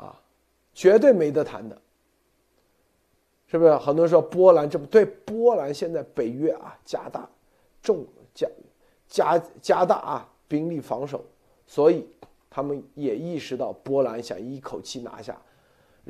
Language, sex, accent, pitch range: Chinese, male, native, 125-165 Hz